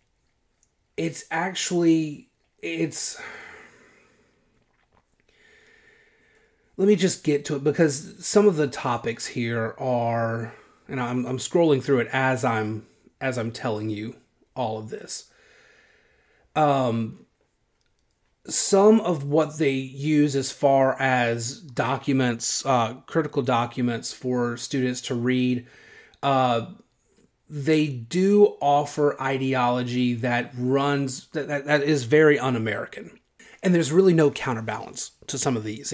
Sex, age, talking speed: male, 30-49, 115 wpm